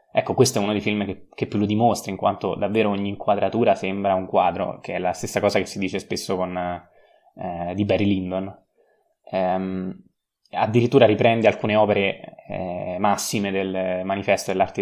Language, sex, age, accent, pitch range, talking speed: Italian, male, 20-39, native, 100-120 Hz, 175 wpm